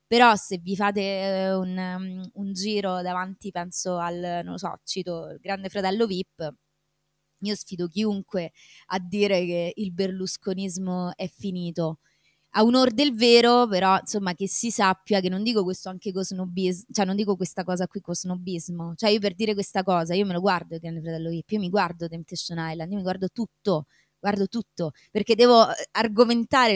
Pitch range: 180-225 Hz